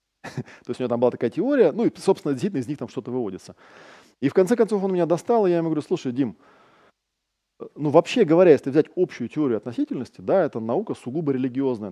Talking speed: 215 wpm